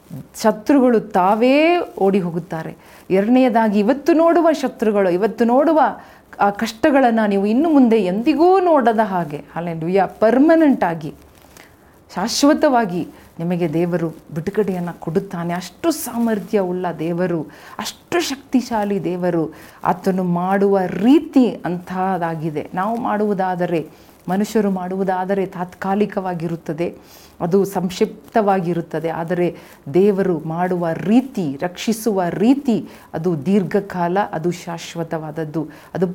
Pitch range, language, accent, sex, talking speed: 170-215 Hz, Kannada, native, female, 95 wpm